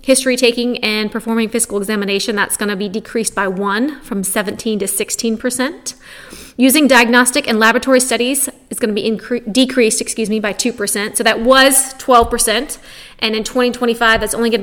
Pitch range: 220-260 Hz